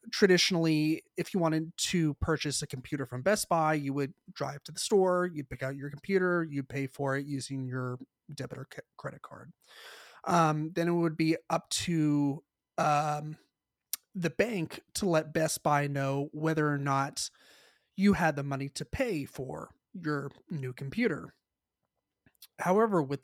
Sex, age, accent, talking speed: male, 30-49, American, 160 wpm